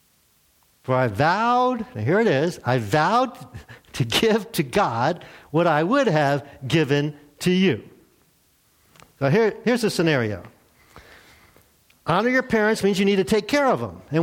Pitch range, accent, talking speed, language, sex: 140-205 Hz, American, 150 wpm, English, male